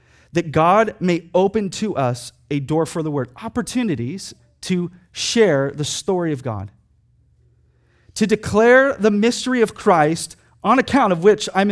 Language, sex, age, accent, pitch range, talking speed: English, male, 30-49, American, 155-215 Hz, 150 wpm